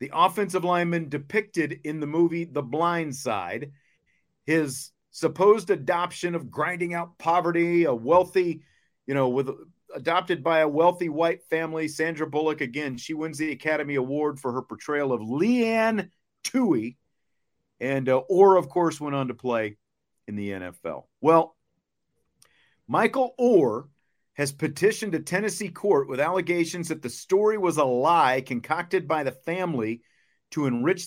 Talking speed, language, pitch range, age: 145 wpm, English, 140-185 Hz, 50-69